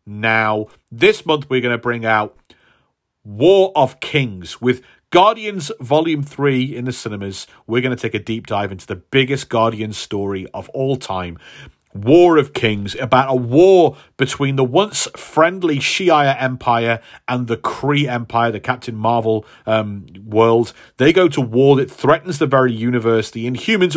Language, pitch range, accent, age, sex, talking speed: English, 110-150 Hz, British, 40-59, male, 165 wpm